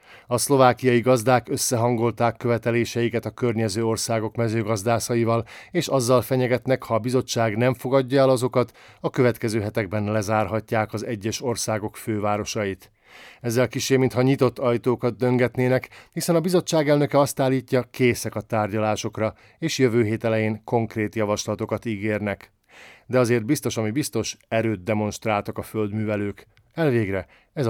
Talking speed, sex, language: 130 wpm, male, Hungarian